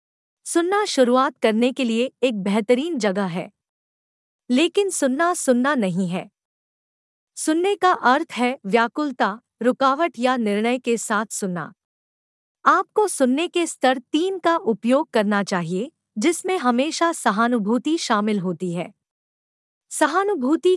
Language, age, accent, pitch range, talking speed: Hindi, 50-69, native, 220-305 Hz, 120 wpm